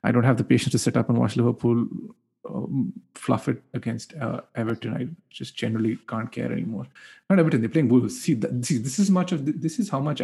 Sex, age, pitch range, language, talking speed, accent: male, 30-49, 120-155 Hz, English, 215 wpm, Indian